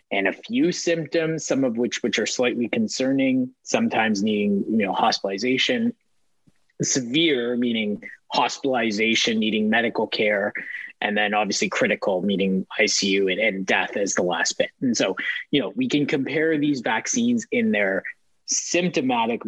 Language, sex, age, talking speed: English, male, 30-49, 145 wpm